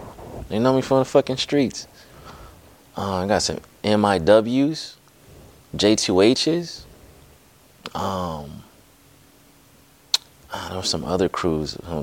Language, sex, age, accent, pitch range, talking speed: English, male, 30-49, American, 80-95 Hz, 105 wpm